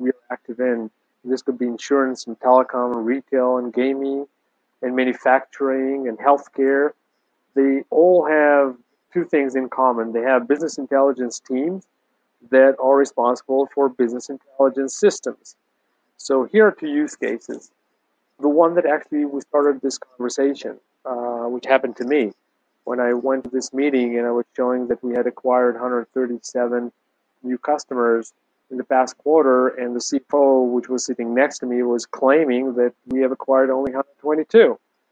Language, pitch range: English, 125-145 Hz